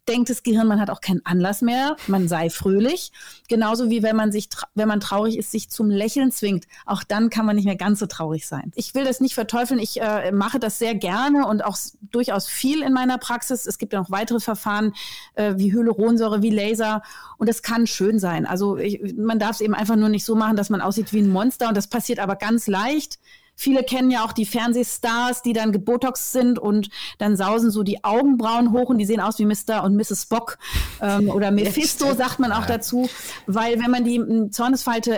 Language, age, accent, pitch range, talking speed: German, 30-49, German, 210-245 Hz, 225 wpm